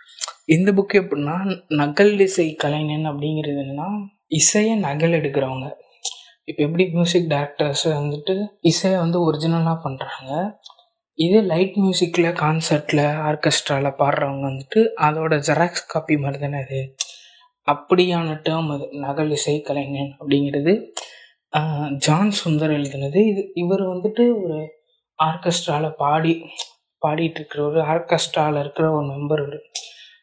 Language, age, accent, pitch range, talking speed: Tamil, 20-39, native, 145-180 Hz, 105 wpm